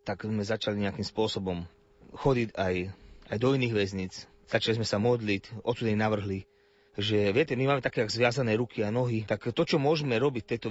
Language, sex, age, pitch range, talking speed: Slovak, male, 30-49, 105-125 Hz, 185 wpm